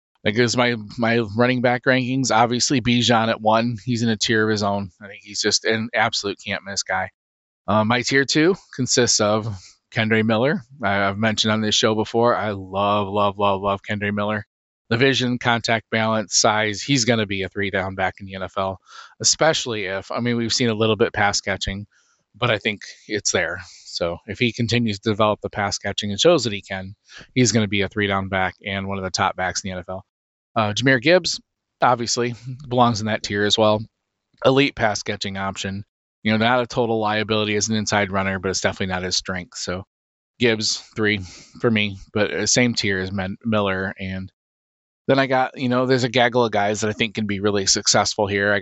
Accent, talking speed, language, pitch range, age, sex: American, 210 wpm, English, 100-120 Hz, 20-39, male